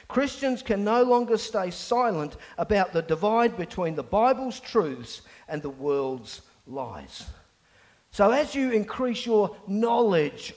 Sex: male